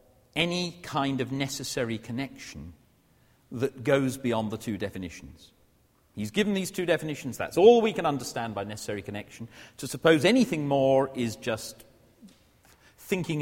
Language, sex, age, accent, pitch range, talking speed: English, male, 40-59, British, 110-155 Hz, 140 wpm